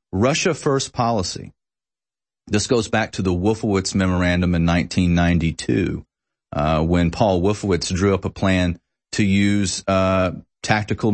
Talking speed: 130 wpm